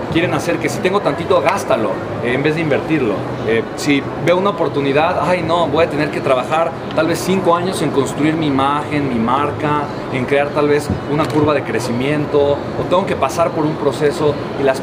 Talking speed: 205 wpm